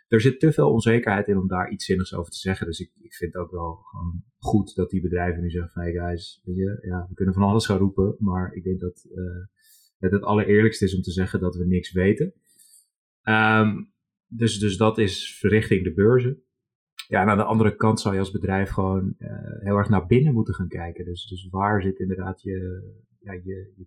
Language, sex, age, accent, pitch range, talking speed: Dutch, male, 30-49, Dutch, 95-110 Hz, 225 wpm